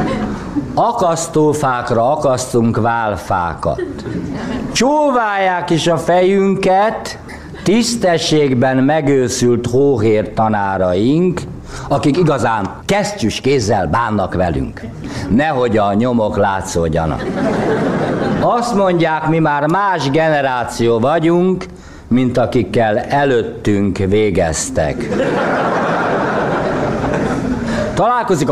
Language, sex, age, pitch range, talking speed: Hungarian, male, 60-79, 125-200 Hz, 70 wpm